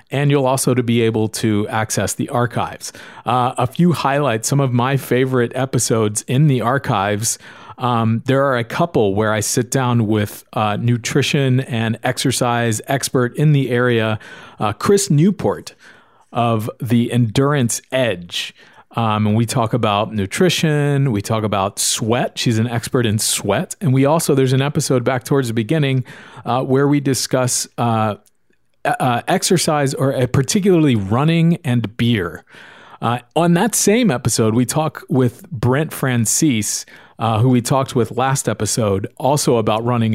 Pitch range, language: 115-140 Hz, English